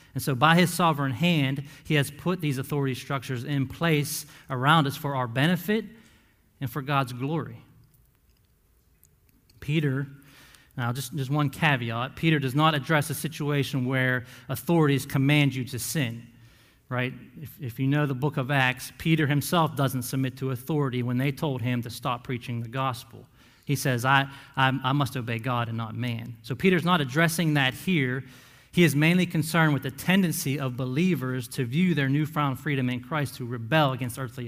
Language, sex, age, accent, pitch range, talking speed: English, male, 40-59, American, 125-150 Hz, 180 wpm